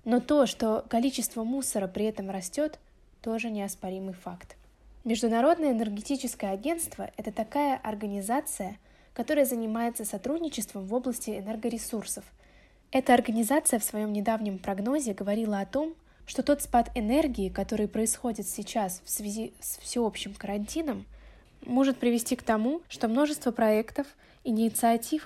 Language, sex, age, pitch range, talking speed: Russian, female, 20-39, 205-260 Hz, 125 wpm